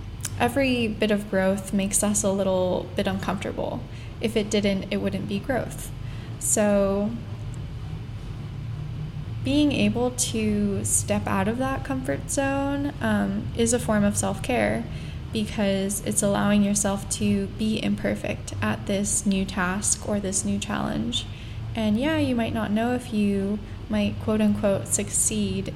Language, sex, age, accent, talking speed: English, female, 10-29, American, 140 wpm